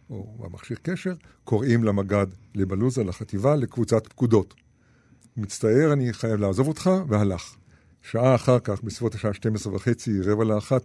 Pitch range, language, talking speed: 105-125 Hz, Hebrew, 135 wpm